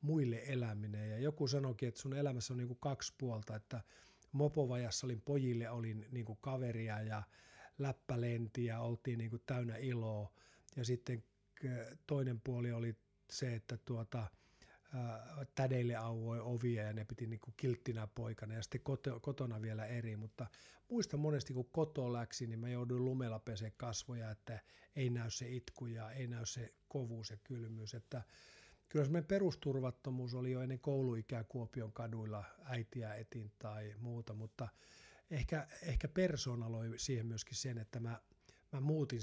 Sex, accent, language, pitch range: male, native, Finnish, 115-130 Hz